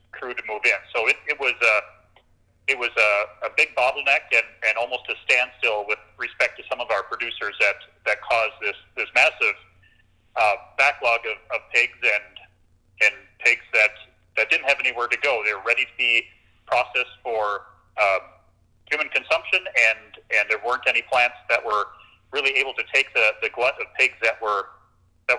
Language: English